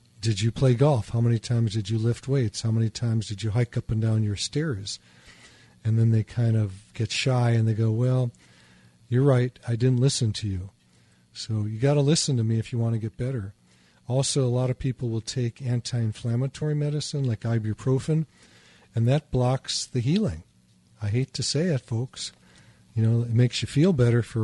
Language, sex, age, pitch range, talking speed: English, male, 40-59, 110-125 Hz, 205 wpm